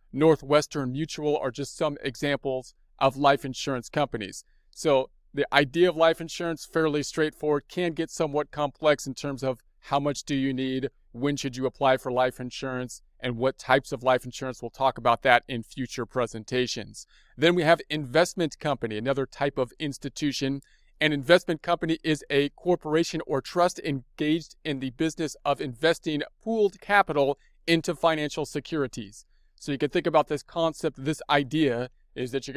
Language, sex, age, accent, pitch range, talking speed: English, male, 40-59, American, 130-160 Hz, 165 wpm